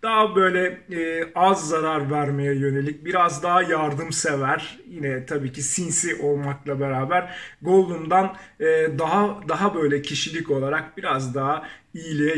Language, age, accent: Turkish, 40-59, native